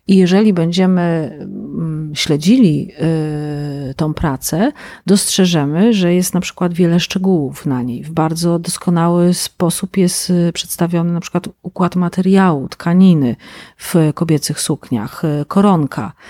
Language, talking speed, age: Polish, 110 wpm, 40-59